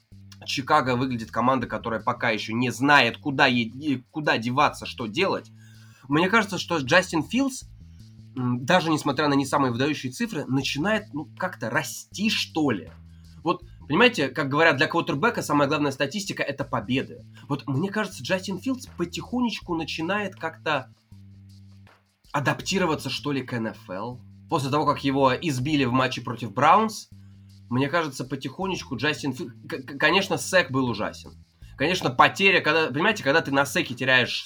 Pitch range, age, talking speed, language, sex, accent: 110-160 Hz, 20-39, 145 wpm, Russian, male, native